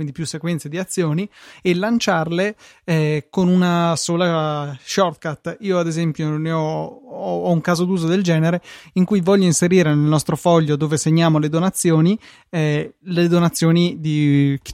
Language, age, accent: Italian, 20-39, native